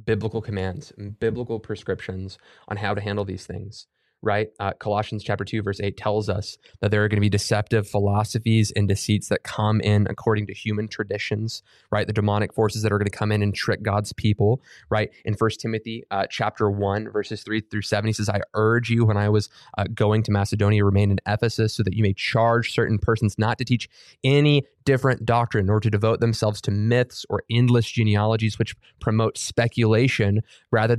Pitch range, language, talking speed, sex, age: 105-120 Hz, English, 200 wpm, male, 20-39